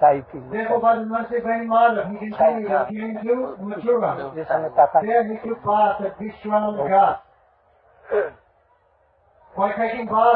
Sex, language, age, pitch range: male, Hindi, 40-59, 205-230 Hz